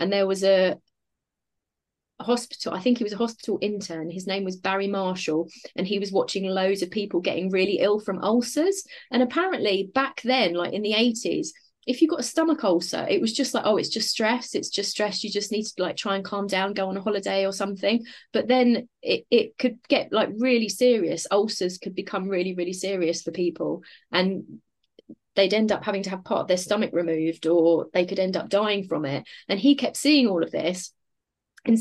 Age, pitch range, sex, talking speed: 30-49, 190-240 Hz, female, 215 wpm